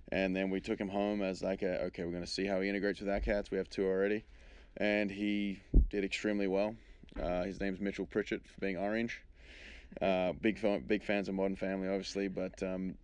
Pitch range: 95-100 Hz